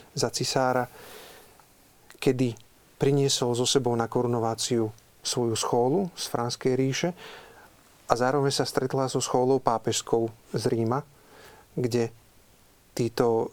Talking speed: 105 wpm